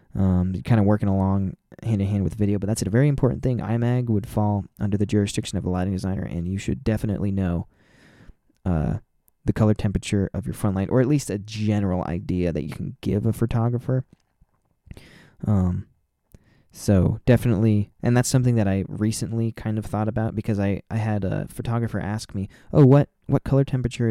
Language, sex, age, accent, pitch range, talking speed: English, male, 20-39, American, 95-115 Hz, 190 wpm